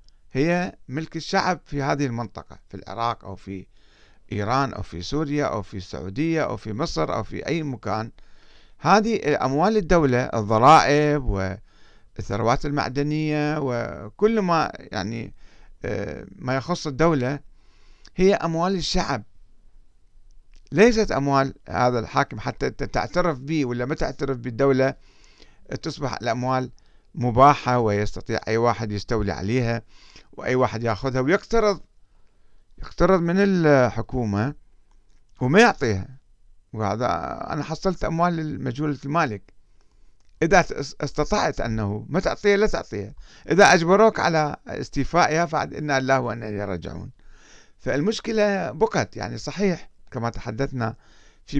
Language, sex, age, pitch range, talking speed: Arabic, male, 50-69, 105-150 Hz, 115 wpm